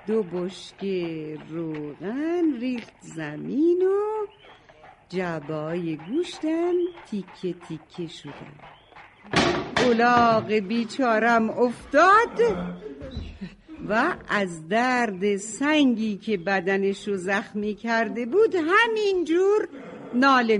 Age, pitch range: 50-69, 180-255 Hz